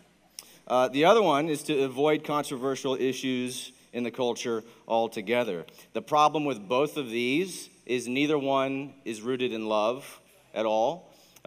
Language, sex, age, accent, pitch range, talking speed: English, male, 40-59, American, 115-140 Hz, 145 wpm